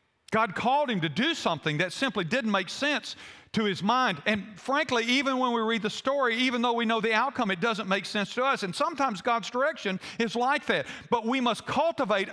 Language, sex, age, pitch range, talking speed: English, male, 50-69, 165-240 Hz, 220 wpm